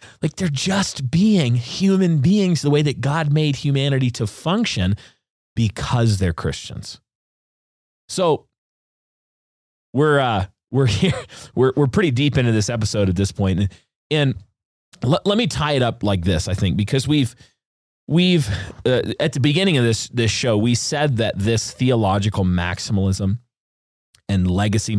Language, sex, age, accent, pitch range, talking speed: English, male, 30-49, American, 100-135 Hz, 150 wpm